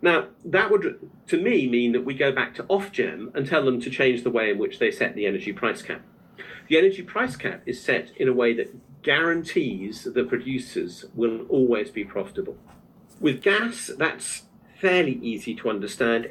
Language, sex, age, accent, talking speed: English, male, 50-69, British, 190 wpm